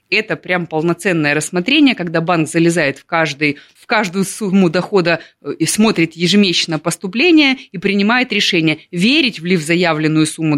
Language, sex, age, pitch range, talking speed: Russian, female, 20-39, 155-200 Hz, 135 wpm